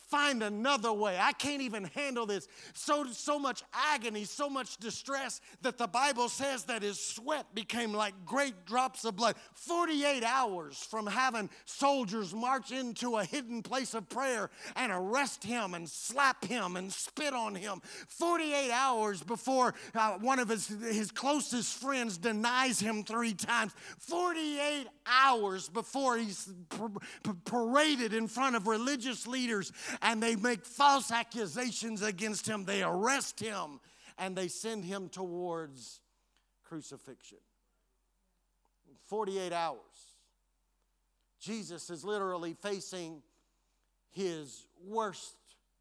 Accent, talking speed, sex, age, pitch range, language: American, 130 wpm, male, 50-69, 195-255 Hz, English